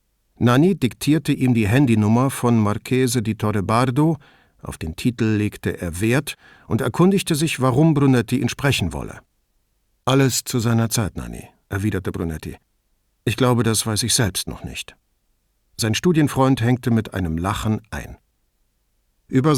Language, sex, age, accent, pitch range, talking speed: English, male, 50-69, German, 105-135 Hz, 140 wpm